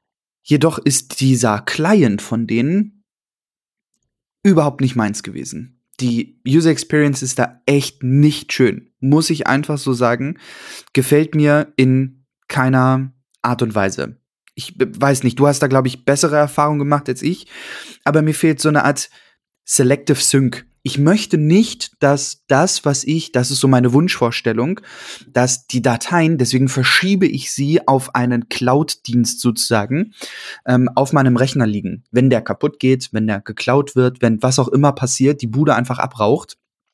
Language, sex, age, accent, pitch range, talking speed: German, male, 20-39, German, 125-150 Hz, 155 wpm